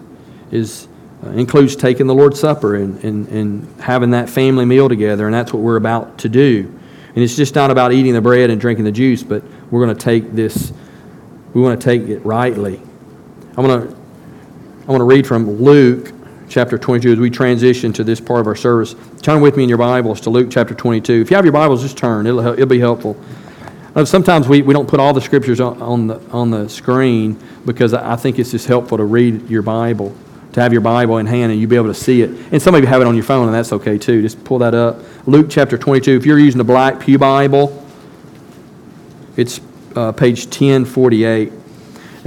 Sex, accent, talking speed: male, American, 215 wpm